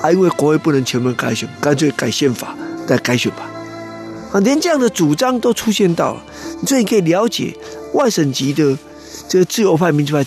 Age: 50-69